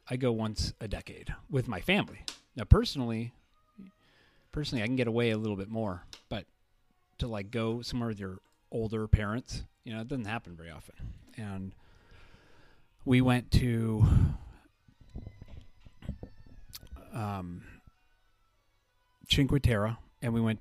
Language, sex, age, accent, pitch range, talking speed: English, male, 40-59, American, 95-120 Hz, 130 wpm